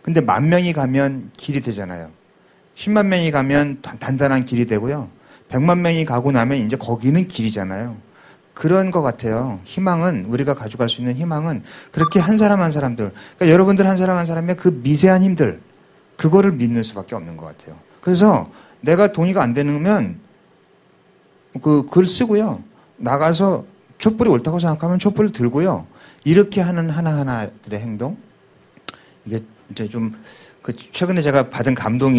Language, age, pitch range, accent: Korean, 40-59, 115-170 Hz, native